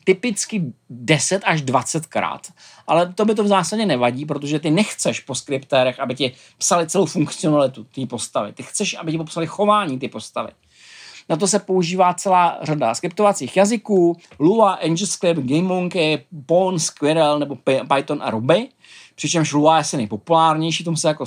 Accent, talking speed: native, 160 wpm